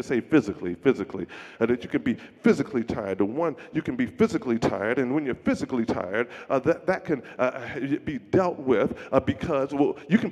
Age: 40-59